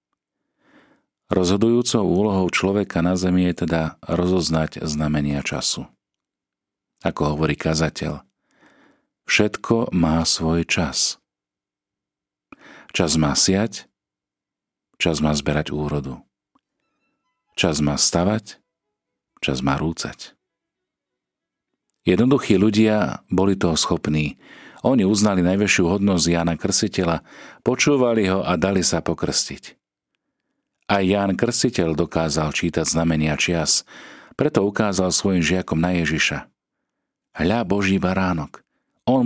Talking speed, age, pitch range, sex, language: 100 wpm, 40-59, 80-100 Hz, male, Slovak